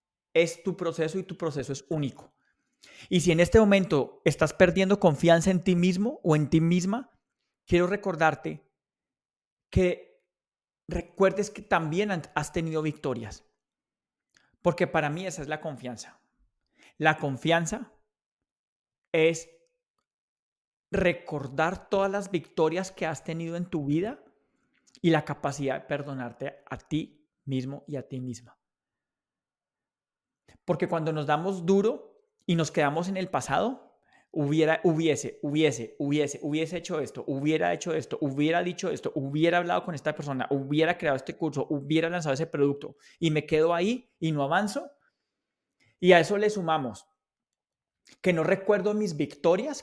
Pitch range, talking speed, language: 150-185 Hz, 140 wpm, Spanish